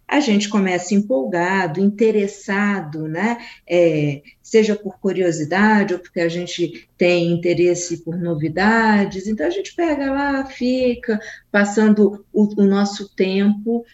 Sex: female